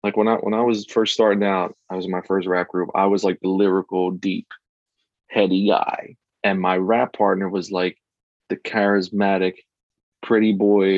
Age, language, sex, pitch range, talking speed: 30-49, English, male, 95-110 Hz, 185 wpm